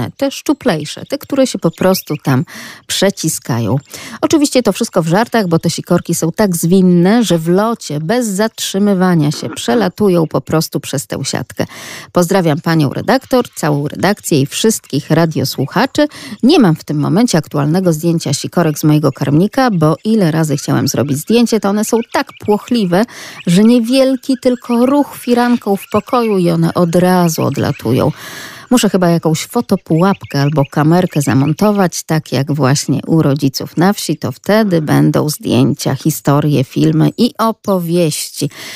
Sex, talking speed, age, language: female, 150 wpm, 40-59, Polish